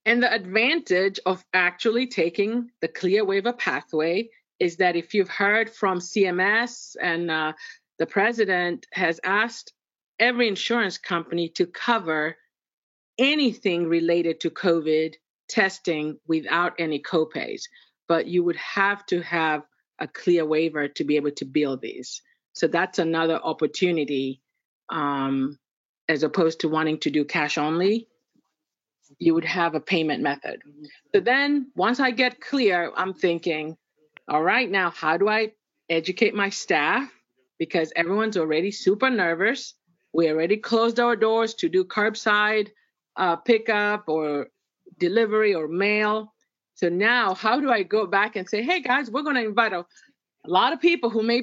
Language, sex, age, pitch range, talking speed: English, female, 50-69, 165-230 Hz, 150 wpm